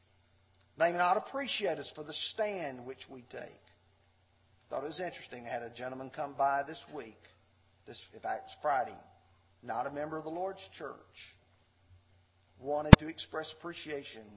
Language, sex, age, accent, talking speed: English, male, 40-59, American, 165 wpm